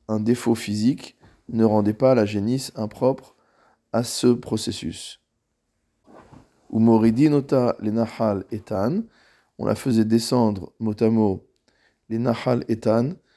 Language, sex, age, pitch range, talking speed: French, male, 20-39, 105-120 Hz, 115 wpm